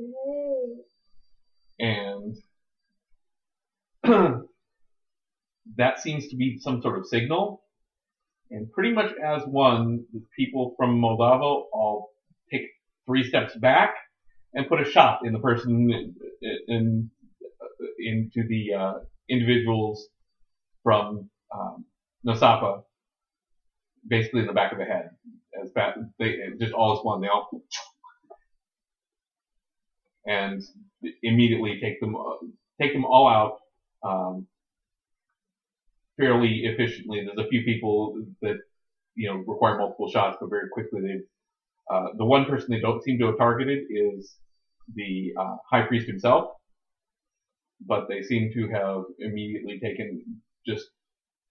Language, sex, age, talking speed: English, male, 30-49, 120 wpm